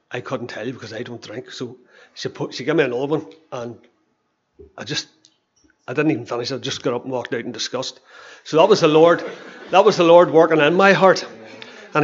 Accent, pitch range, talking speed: Irish, 140-160 Hz, 230 wpm